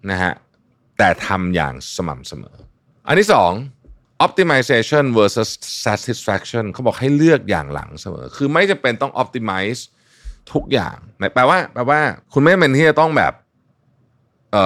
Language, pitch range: Thai, 85-130 Hz